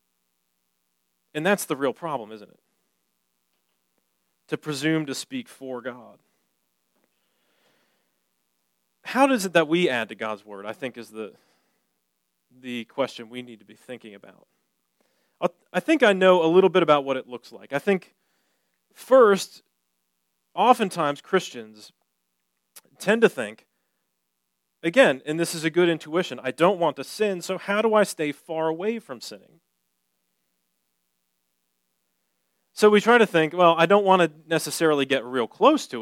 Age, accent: 30-49, American